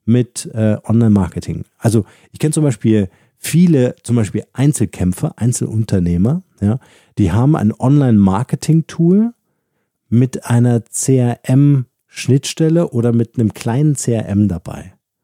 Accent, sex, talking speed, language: German, male, 100 wpm, German